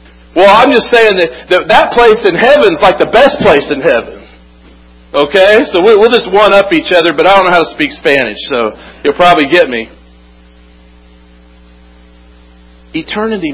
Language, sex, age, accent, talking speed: English, male, 50-69, American, 160 wpm